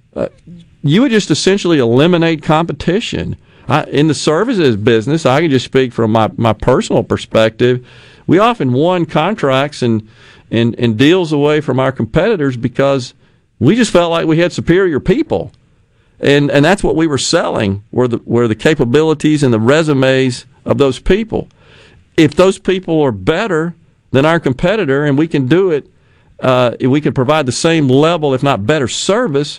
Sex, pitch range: male, 125-160 Hz